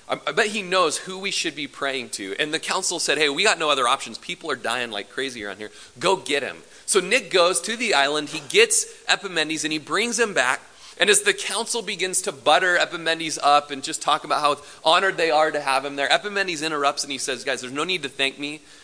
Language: English